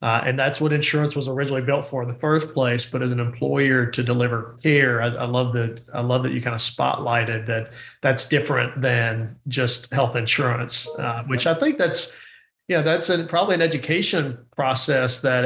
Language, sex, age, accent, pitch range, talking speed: English, male, 40-59, American, 120-145 Hz, 205 wpm